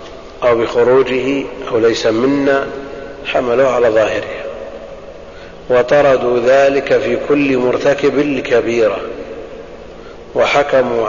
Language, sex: Arabic, male